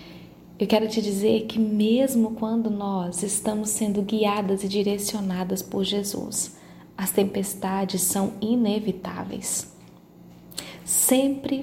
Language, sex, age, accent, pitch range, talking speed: Portuguese, female, 20-39, Brazilian, 190-220 Hz, 105 wpm